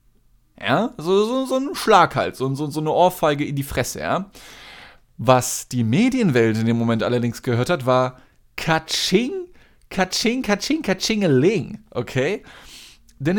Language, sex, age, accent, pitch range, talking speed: German, male, 20-39, German, 125-160 Hz, 140 wpm